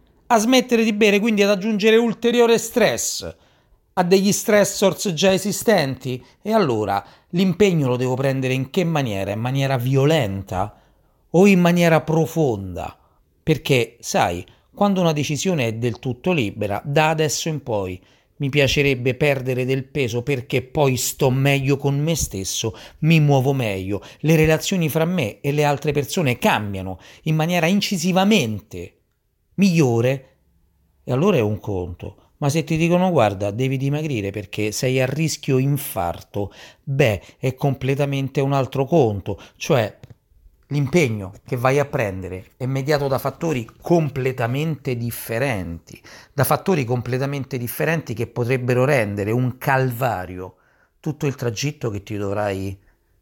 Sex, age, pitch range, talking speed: male, 40-59, 105-155 Hz, 135 wpm